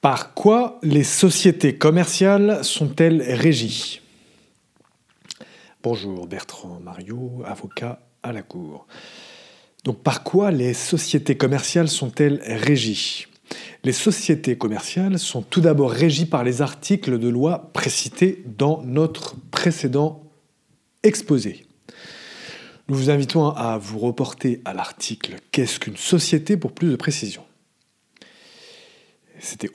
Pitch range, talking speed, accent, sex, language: 125-175 Hz, 110 wpm, French, male, English